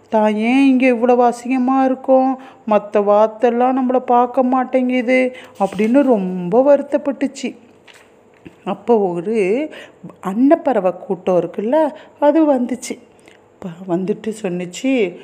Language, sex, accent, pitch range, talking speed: Tamil, female, native, 205-260 Hz, 95 wpm